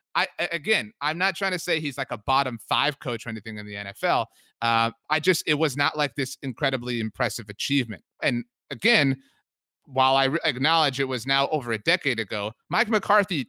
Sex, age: male, 30-49